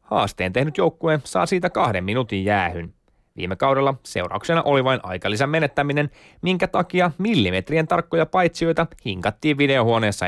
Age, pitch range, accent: 20-39, 100-160 Hz, native